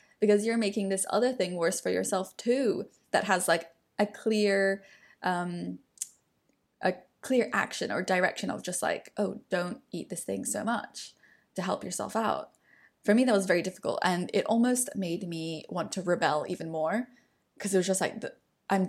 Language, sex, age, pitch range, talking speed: English, female, 10-29, 180-210 Hz, 180 wpm